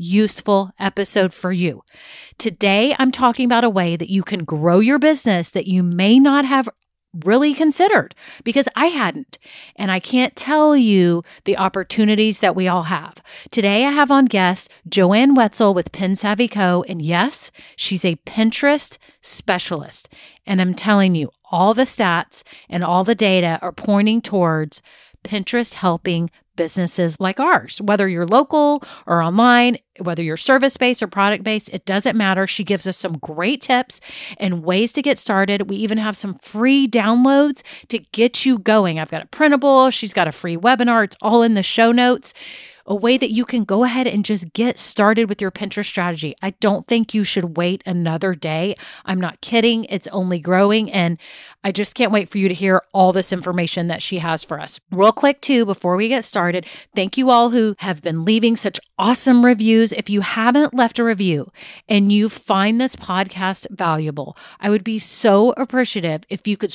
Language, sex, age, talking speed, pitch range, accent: English, female, 40-59, 185 wpm, 185-240 Hz, American